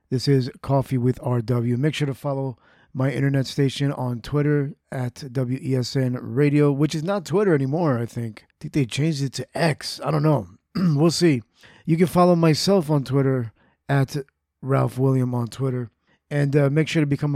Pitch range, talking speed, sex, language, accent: 130-155 Hz, 185 wpm, male, English, American